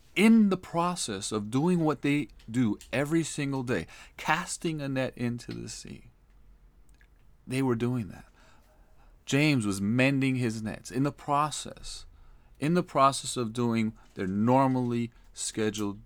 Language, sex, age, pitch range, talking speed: English, male, 40-59, 85-130 Hz, 140 wpm